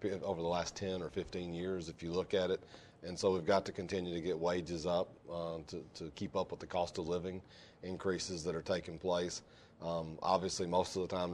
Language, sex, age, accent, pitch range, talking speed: English, male, 40-59, American, 85-95 Hz, 230 wpm